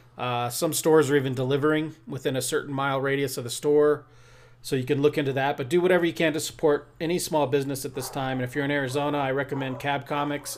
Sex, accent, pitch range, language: male, American, 130-160 Hz, English